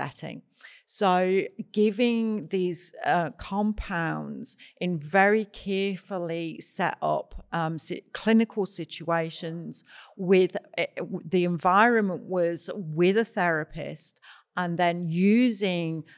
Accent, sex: British, female